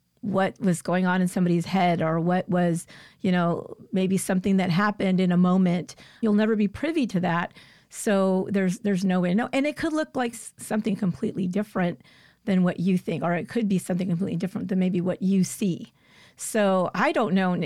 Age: 40-59